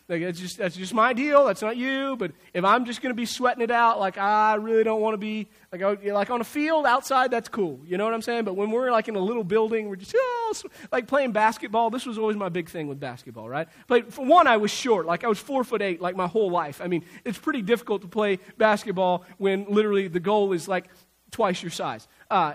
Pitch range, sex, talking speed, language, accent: 190-245 Hz, male, 260 wpm, English, American